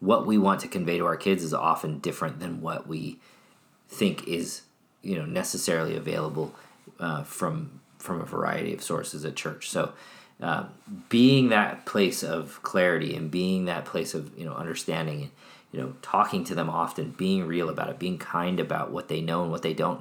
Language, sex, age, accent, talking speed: English, male, 40-59, American, 190 wpm